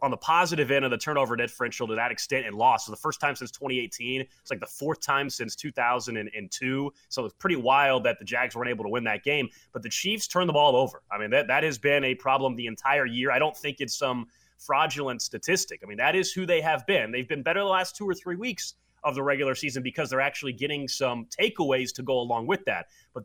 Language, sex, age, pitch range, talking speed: English, male, 30-49, 130-160 Hz, 250 wpm